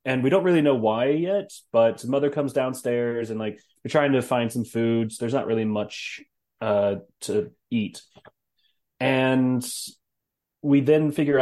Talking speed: 165 wpm